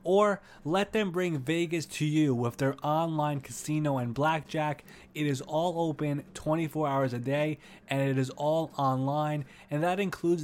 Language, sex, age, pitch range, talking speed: English, male, 20-39, 130-160 Hz, 165 wpm